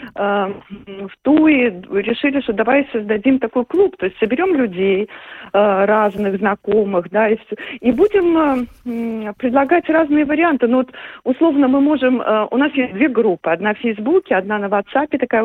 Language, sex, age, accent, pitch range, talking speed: Russian, female, 40-59, native, 190-250 Hz, 150 wpm